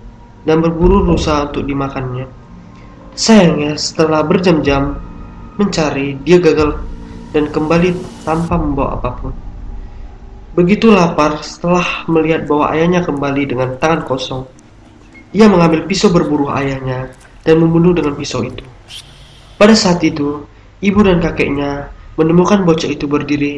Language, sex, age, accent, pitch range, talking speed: Indonesian, male, 20-39, native, 130-165 Hz, 115 wpm